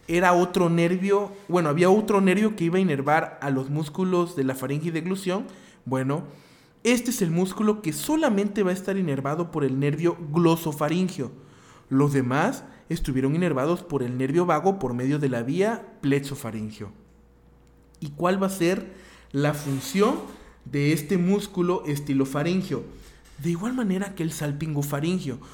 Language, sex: Spanish, male